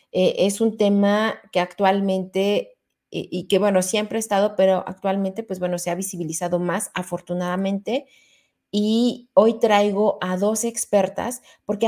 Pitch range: 185-230 Hz